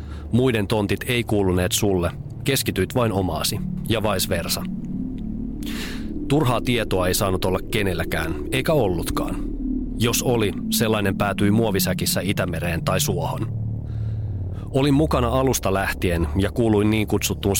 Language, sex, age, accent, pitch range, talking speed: Finnish, male, 30-49, native, 95-125 Hz, 120 wpm